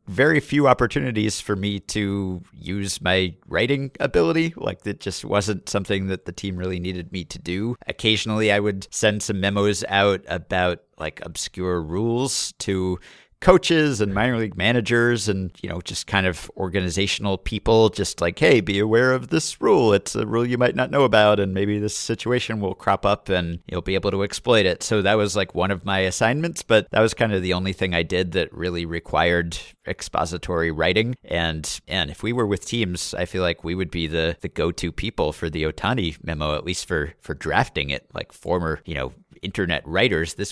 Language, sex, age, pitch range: English, male, 50-69, 85-110 Hz